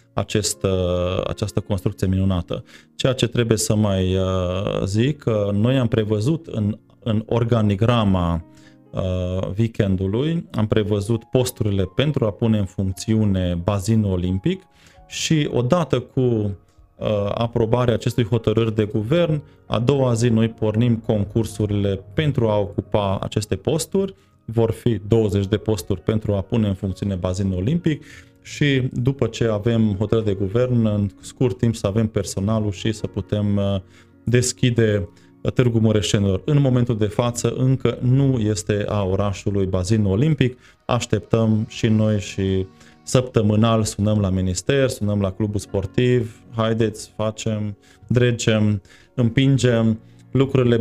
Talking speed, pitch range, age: 130 wpm, 100-120 Hz, 20-39